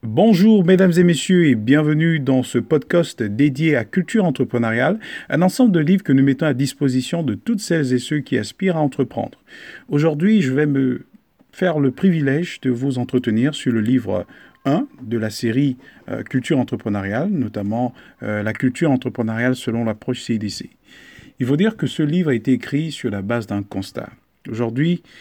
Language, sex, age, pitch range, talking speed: French, male, 50-69, 120-150 Hz, 175 wpm